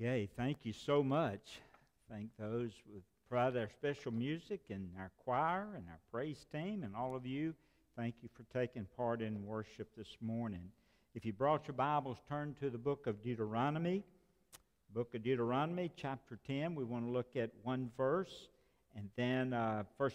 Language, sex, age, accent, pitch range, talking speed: English, male, 60-79, American, 110-150 Hz, 175 wpm